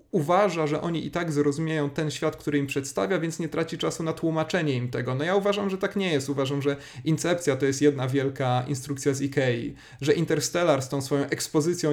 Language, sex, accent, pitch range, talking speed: Polish, male, native, 140-155 Hz, 210 wpm